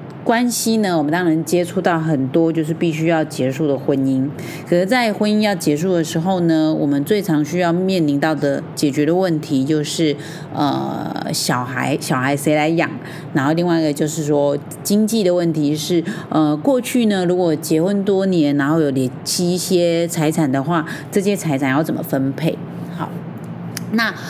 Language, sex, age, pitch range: Chinese, female, 30-49, 155-210 Hz